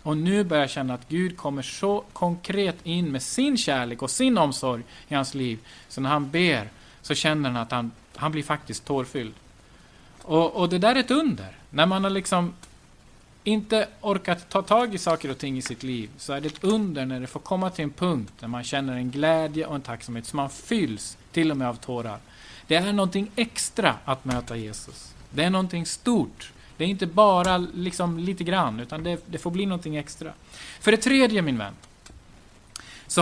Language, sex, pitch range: Swedish, male, 125-185 Hz